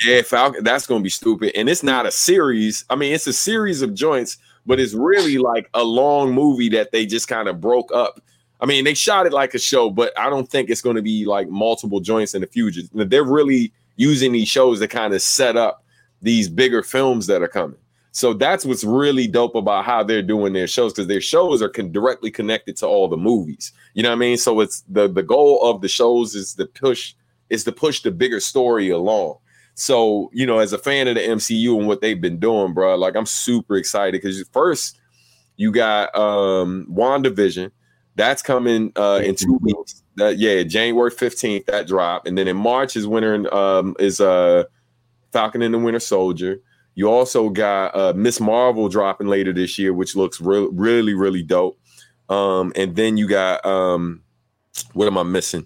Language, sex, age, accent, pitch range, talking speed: English, male, 30-49, American, 95-125 Hz, 210 wpm